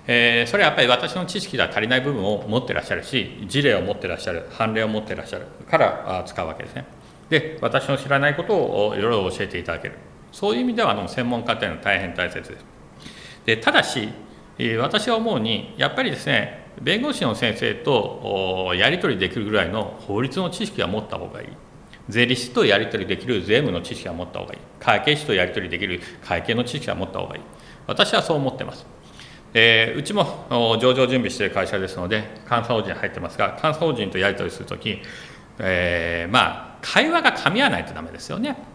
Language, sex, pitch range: Japanese, male, 105-155 Hz